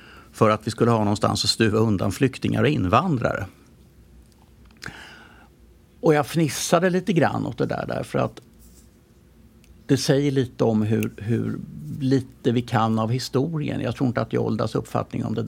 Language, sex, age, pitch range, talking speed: English, male, 50-69, 110-135 Hz, 165 wpm